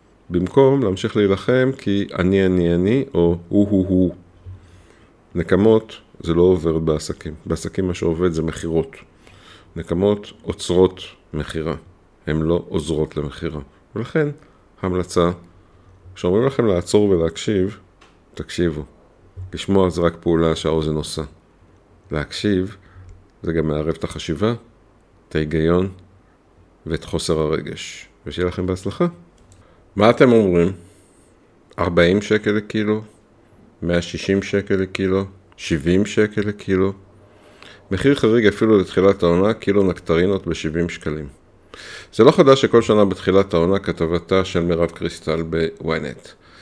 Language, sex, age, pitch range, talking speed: Hebrew, male, 50-69, 85-100 Hz, 115 wpm